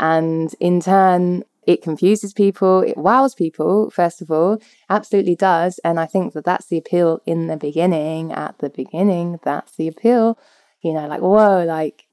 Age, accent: 20-39, British